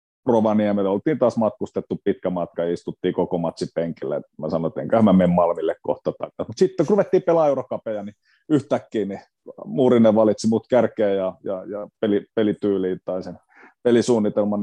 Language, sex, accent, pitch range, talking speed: Finnish, male, native, 90-110 Hz, 160 wpm